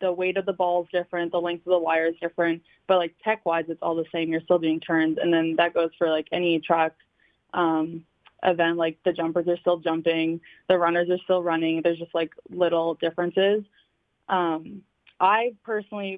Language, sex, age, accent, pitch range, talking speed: English, female, 20-39, American, 165-185 Hz, 200 wpm